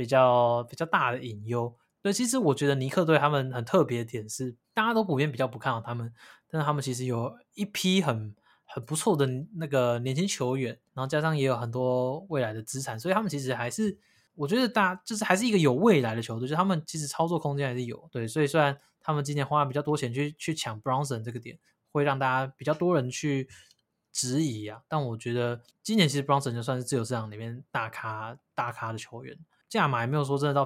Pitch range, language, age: 120-155 Hz, Chinese, 20-39